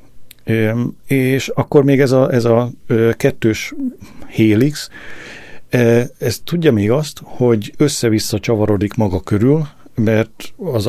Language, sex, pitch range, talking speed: Hungarian, male, 100-125 Hz, 110 wpm